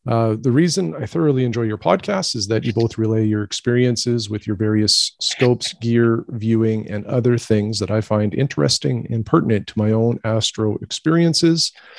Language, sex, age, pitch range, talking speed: English, male, 40-59, 105-130 Hz, 175 wpm